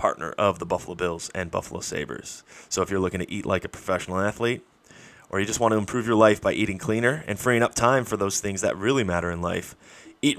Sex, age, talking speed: male, 30-49, 245 wpm